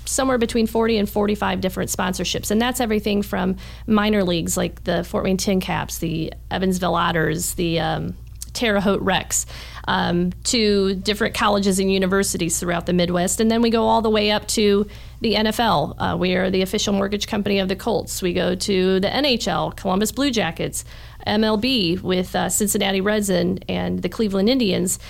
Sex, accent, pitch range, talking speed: female, American, 180-215 Hz, 175 wpm